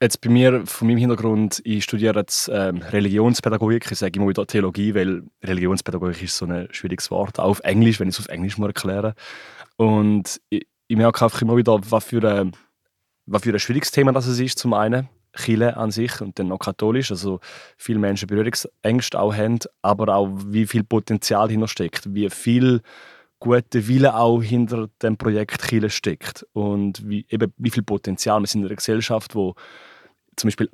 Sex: male